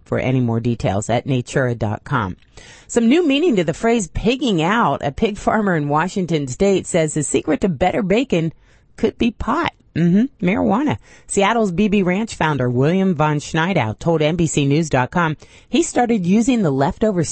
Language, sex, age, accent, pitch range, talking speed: English, female, 30-49, American, 140-200 Hz, 160 wpm